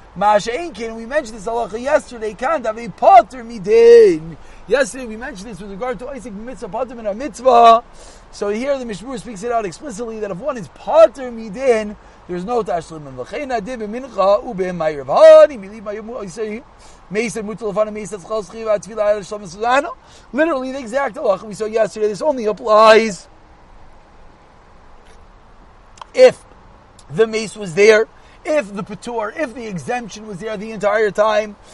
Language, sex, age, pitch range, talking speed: English, male, 40-59, 210-265 Hz, 130 wpm